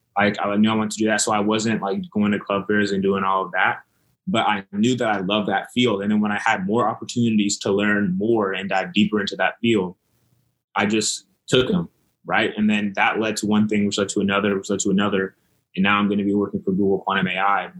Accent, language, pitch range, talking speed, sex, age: American, English, 100-110 Hz, 255 wpm, male, 20-39